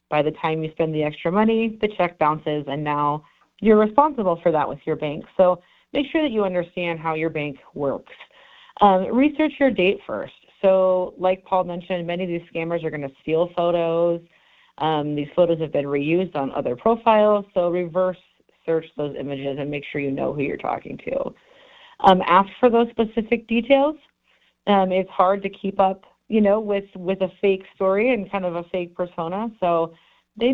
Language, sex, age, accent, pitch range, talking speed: English, female, 40-59, American, 160-210 Hz, 195 wpm